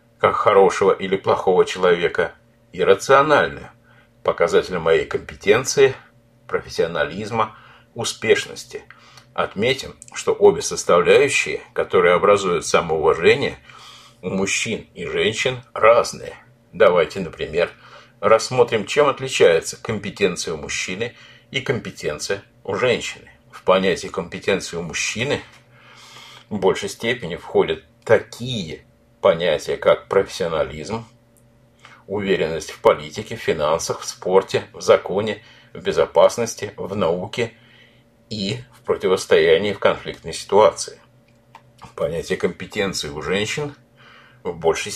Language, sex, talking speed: Russian, male, 100 wpm